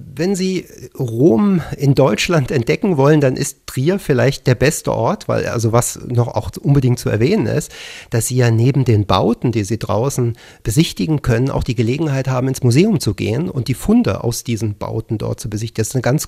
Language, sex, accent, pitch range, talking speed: German, male, German, 115-145 Hz, 205 wpm